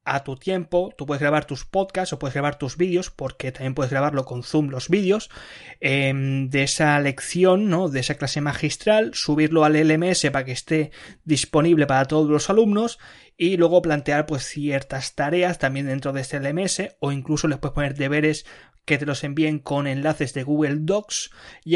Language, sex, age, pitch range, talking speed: Spanish, male, 20-39, 135-160 Hz, 185 wpm